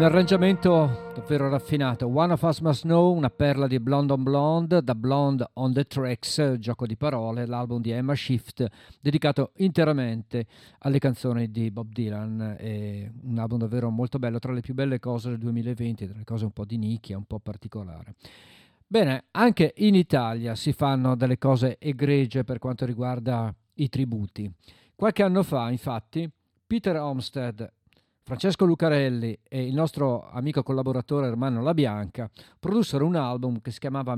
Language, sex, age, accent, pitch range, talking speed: Italian, male, 50-69, native, 120-155 Hz, 160 wpm